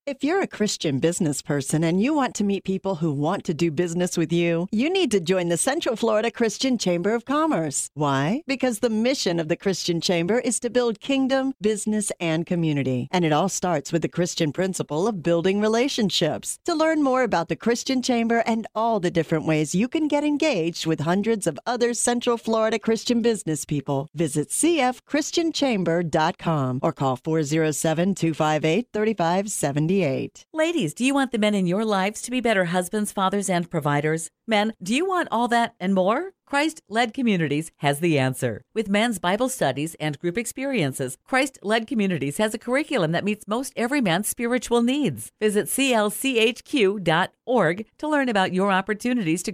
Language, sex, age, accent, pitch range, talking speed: English, female, 50-69, American, 165-235 Hz, 170 wpm